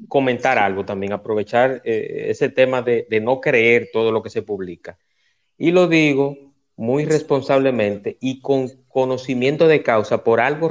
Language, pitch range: Spanish, 105-135 Hz